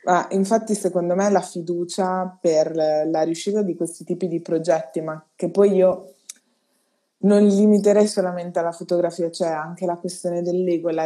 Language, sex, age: Italian, female, 20-39